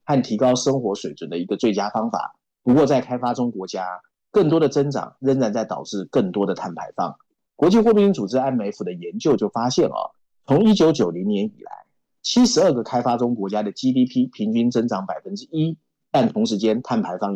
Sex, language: male, Chinese